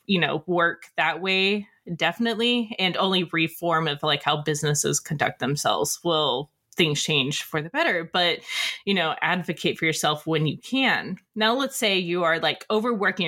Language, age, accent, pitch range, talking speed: English, 20-39, American, 160-195 Hz, 165 wpm